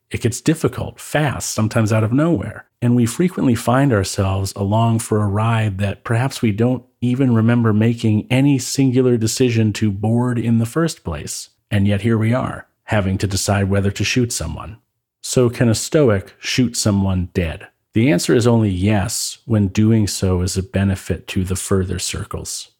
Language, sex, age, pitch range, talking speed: English, male, 40-59, 100-120 Hz, 175 wpm